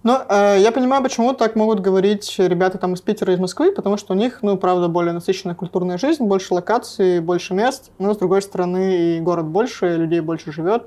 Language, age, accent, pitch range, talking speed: Russian, 20-39, native, 175-215 Hz, 205 wpm